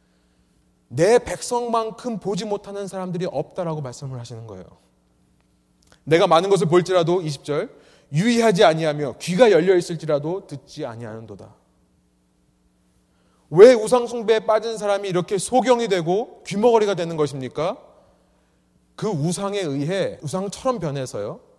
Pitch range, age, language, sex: 140-215 Hz, 30-49, Korean, male